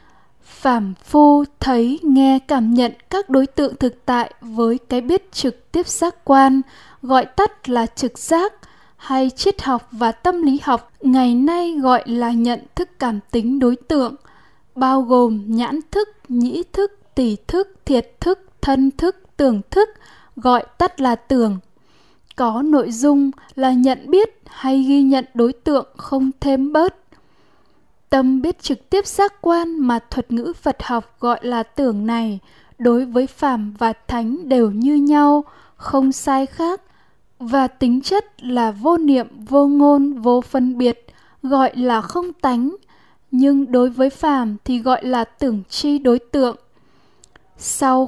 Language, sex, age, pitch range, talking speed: Vietnamese, female, 10-29, 245-295 Hz, 155 wpm